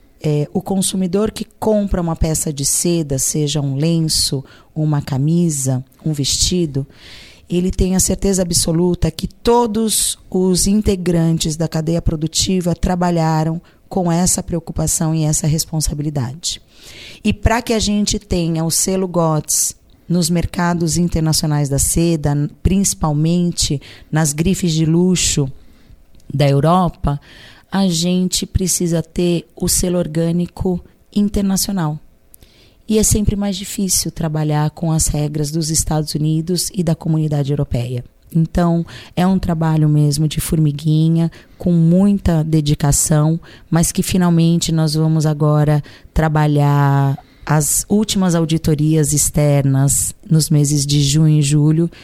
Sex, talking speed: female, 120 wpm